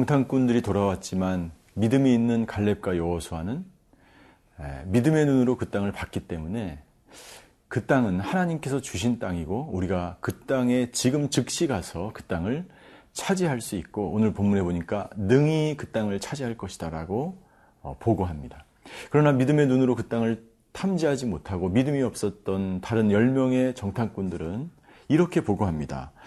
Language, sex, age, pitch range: Korean, male, 40-59, 100-135 Hz